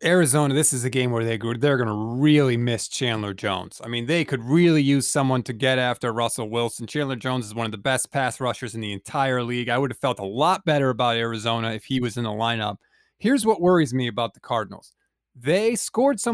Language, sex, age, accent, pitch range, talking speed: English, male, 30-49, American, 125-185 Hz, 235 wpm